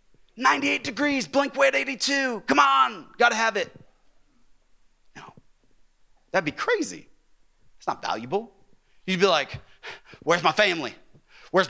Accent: American